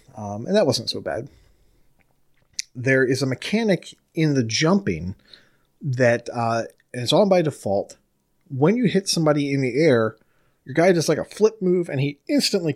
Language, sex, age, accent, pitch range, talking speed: English, male, 30-49, American, 115-150 Hz, 175 wpm